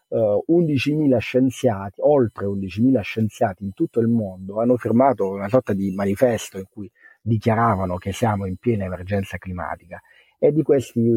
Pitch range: 105-125 Hz